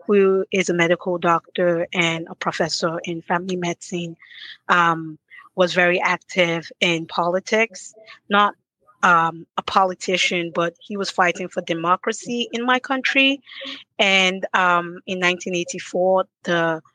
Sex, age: female, 30-49